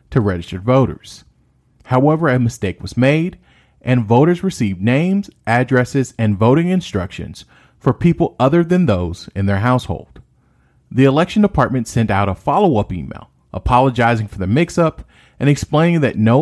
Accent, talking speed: American, 150 wpm